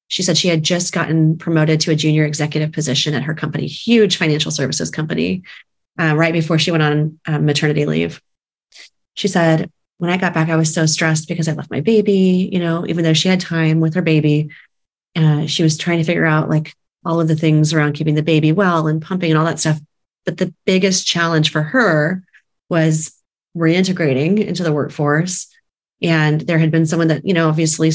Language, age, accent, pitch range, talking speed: English, 30-49, American, 155-175 Hz, 205 wpm